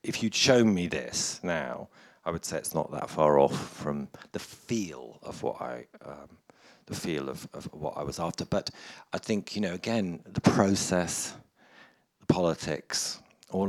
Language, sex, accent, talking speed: English, male, British, 175 wpm